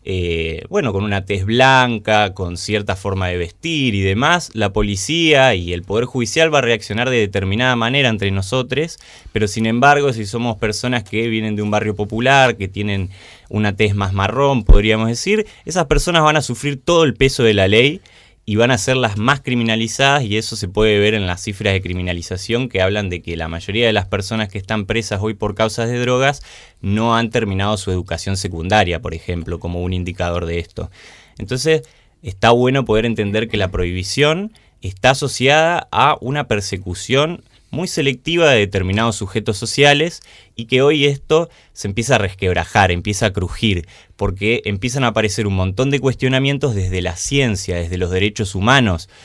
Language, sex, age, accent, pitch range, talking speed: Spanish, male, 20-39, Argentinian, 95-130 Hz, 185 wpm